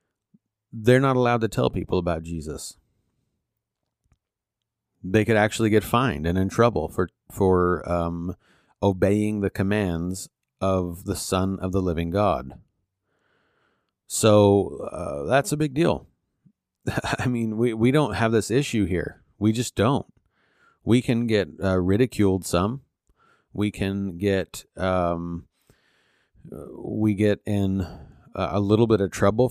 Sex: male